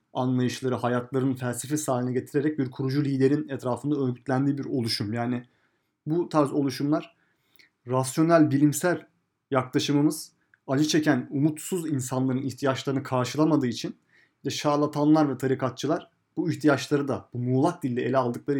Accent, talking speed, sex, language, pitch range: native, 125 wpm, male, Turkish, 120-150 Hz